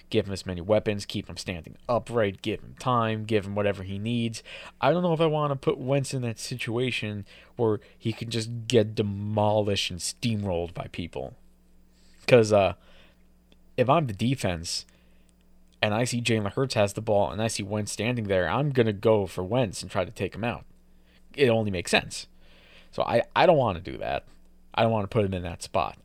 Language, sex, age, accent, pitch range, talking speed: English, male, 20-39, American, 90-115 Hz, 210 wpm